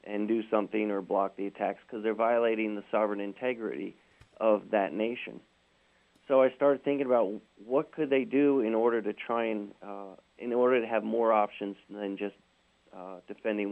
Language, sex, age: English, male, 40-59